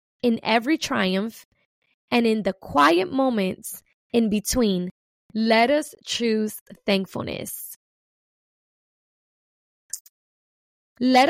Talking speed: 80 wpm